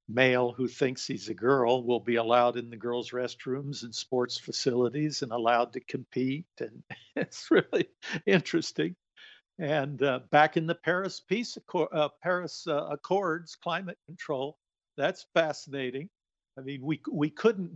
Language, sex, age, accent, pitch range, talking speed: English, male, 50-69, American, 125-160 Hz, 150 wpm